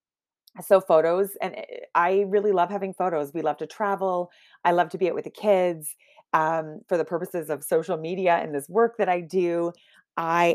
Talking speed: 195 wpm